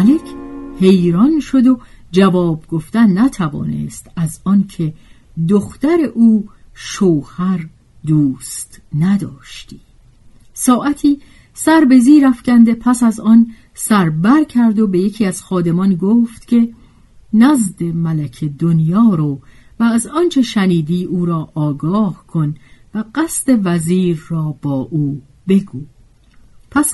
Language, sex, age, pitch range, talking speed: Persian, female, 50-69, 155-230 Hz, 115 wpm